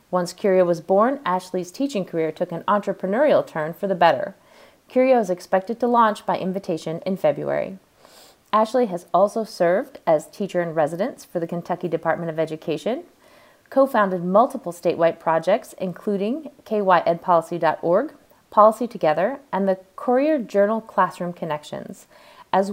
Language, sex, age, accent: English, female, 30-49, American